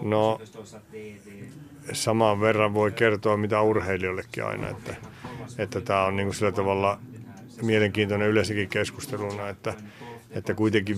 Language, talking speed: Finnish, 115 wpm